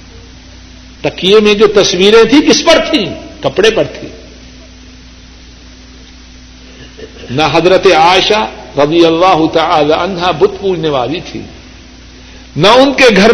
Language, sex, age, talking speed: Urdu, male, 60-79, 110 wpm